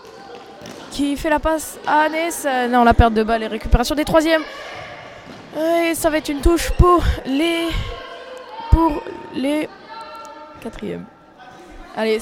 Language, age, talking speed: French, 20-39, 135 wpm